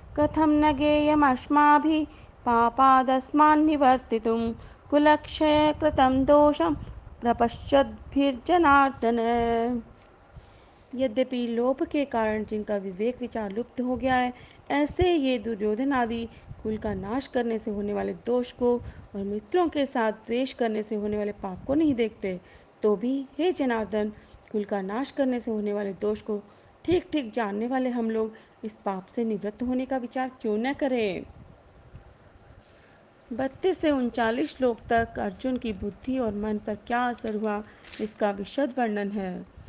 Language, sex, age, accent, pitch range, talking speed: Hindi, female, 30-49, native, 215-270 Hz, 120 wpm